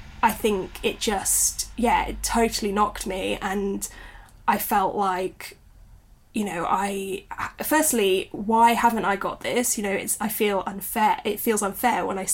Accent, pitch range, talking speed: British, 195-250 Hz, 160 wpm